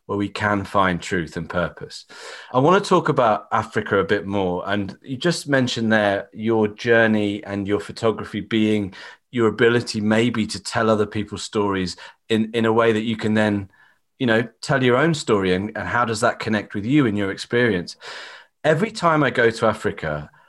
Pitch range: 100-120 Hz